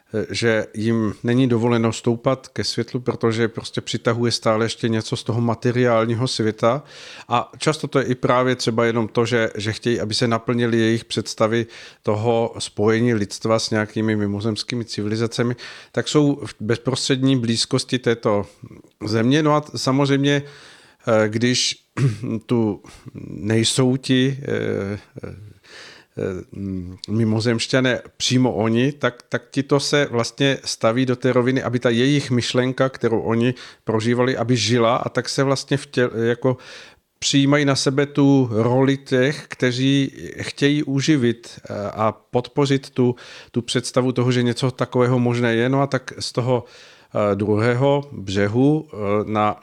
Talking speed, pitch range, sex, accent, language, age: 135 wpm, 115-130 Hz, male, native, Czech, 50-69